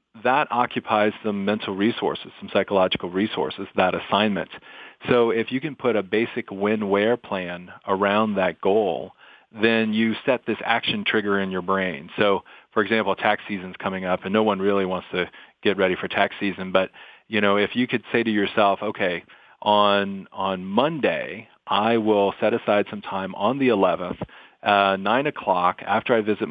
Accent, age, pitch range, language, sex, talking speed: American, 40-59, 95-110 Hz, English, male, 175 wpm